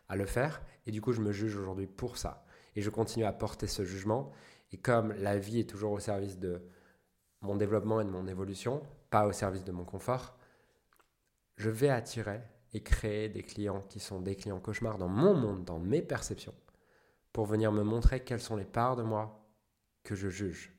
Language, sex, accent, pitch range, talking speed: French, male, French, 95-120 Hz, 205 wpm